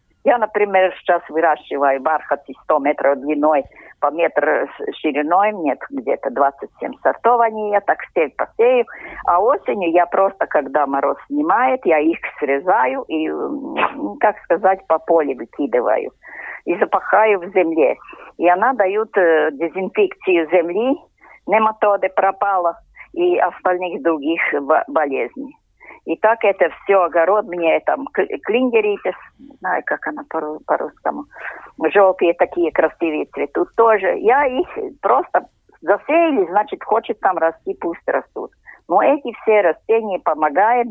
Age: 50-69